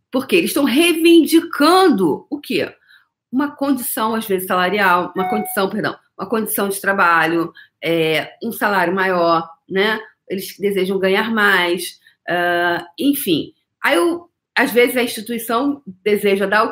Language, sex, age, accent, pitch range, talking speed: Portuguese, female, 40-59, Brazilian, 190-250 Hz, 135 wpm